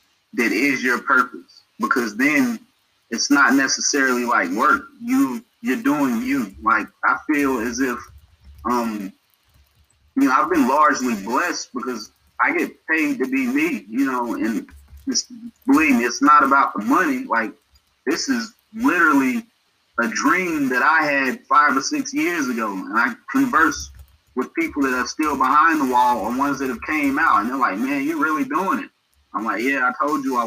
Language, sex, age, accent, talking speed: English, male, 20-39, American, 180 wpm